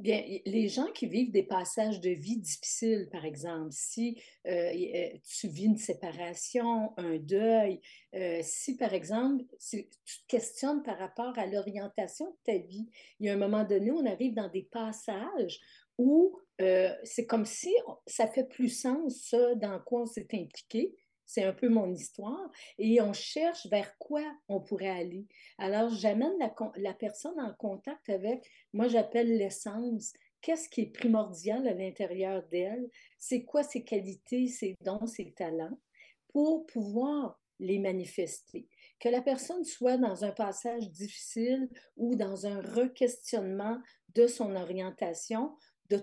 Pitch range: 195-245 Hz